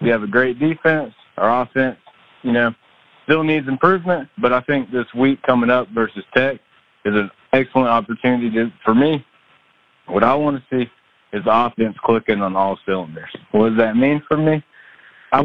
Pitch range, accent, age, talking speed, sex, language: 115-135 Hz, American, 30-49, 185 wpm, male, English